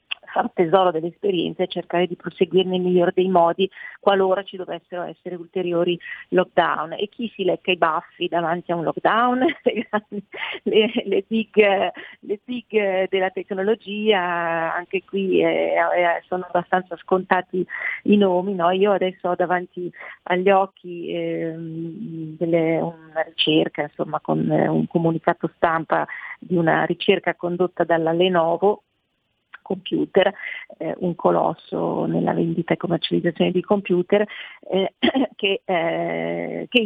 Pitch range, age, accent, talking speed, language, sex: 170-190 Hz, 40-59, native, 125 wpm, Italian, female